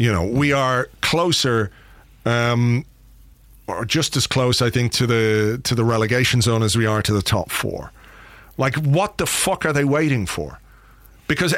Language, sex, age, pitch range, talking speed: English, male, 40-59, 125-165 Hz, 175 wpm